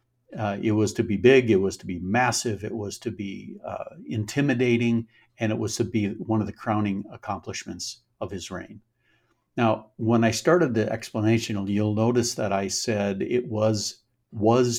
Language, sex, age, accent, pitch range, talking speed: English, male, 60-79, American, 105-125 Hz, 180 wpm